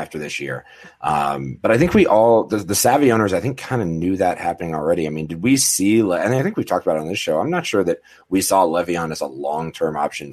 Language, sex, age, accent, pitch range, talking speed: English, male, 30-49, American, 80-105 Hz, 265 wpm